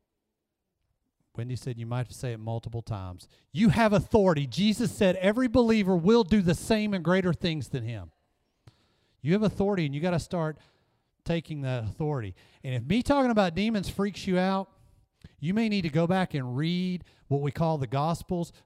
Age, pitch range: 40-59, 120-175 Hz